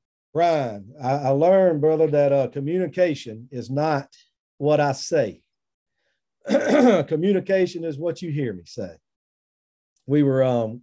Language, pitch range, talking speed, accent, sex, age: English, 135-180 Hz, 120 wpm, American, male, 40-59